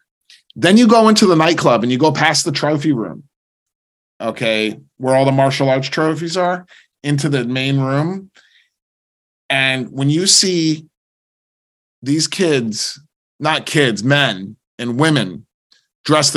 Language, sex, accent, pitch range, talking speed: English, male, American, 125-160 Hz, 135 wpm